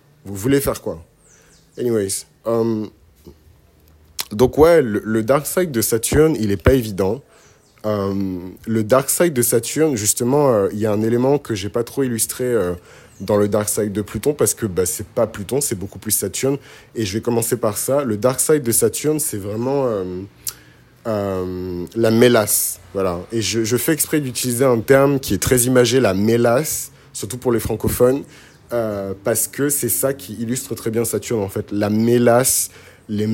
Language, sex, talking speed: French, male, 190 wpm